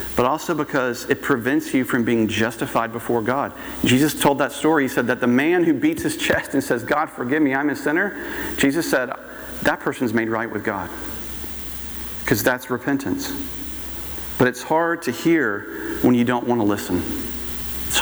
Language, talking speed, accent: English, 185 wpm, American